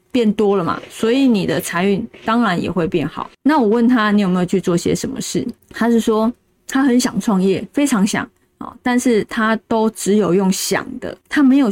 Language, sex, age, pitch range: Chinese, female, 20-39, 195-240 Hz